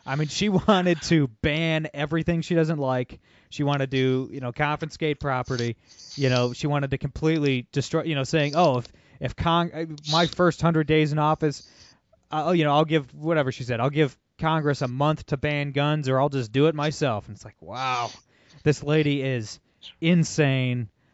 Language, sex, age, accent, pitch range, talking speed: English, male, 20-39, American, 125-155 Hz, 195 wpm